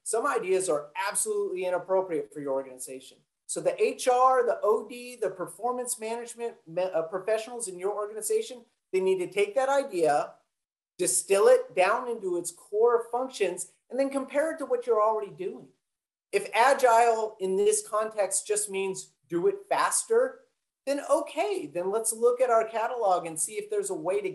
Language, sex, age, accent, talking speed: English, male, 40-59, American, 170 wpm